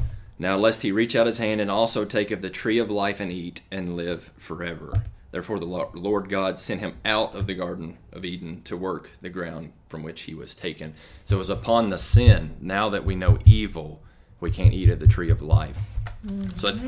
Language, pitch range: English, 90-110 Hz